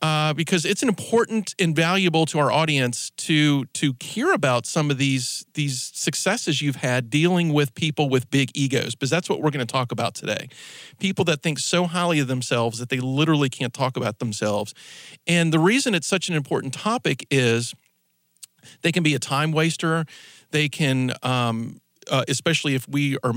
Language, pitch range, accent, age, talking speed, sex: English, 125-165 Hz, American, 40-59, 185 wpm, male